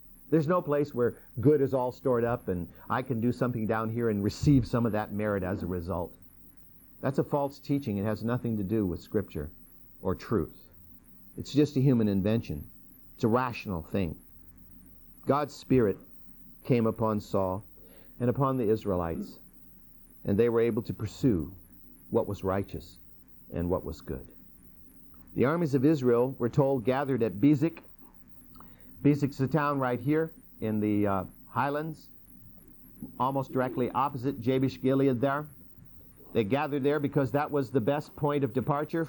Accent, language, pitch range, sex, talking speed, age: American, English, 100-140 Hz, male, 160 wpm, 50-69